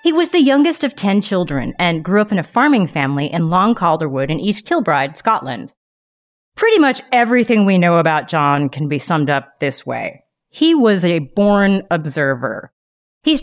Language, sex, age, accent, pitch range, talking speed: English, female, 30-49, American, 155-230 Hz, 180 wpm